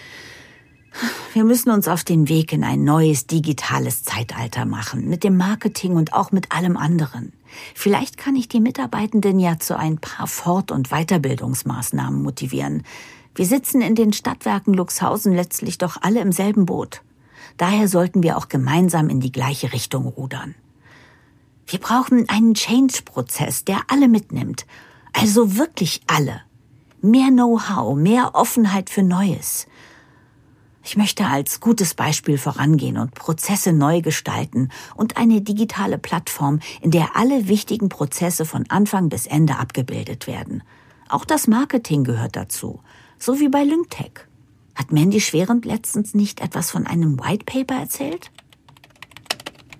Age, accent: 50-69, German